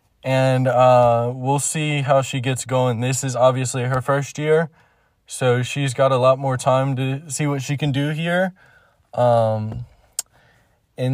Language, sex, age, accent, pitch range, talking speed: English, male, 20-39, American, 120-135 Hz, 160 wpm